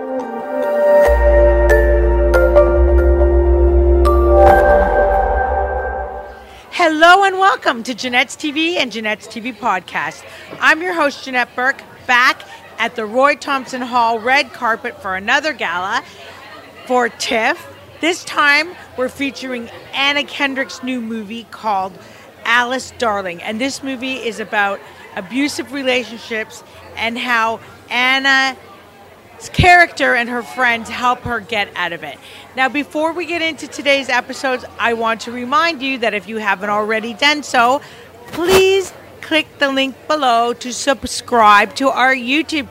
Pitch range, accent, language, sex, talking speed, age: 225-285 Hz, American, English, female, 125 wpm, 40-59